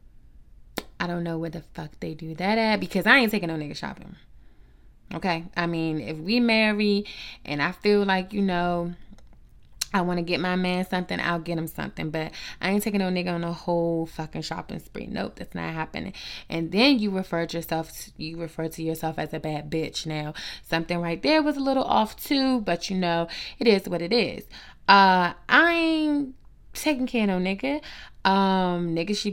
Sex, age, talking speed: female, 20-39, 200 wpm